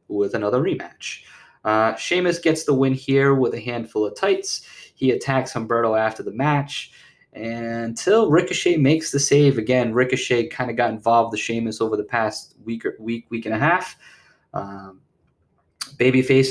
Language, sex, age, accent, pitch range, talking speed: English, male, 20-39, American, 110-130 Hz, 165 wpm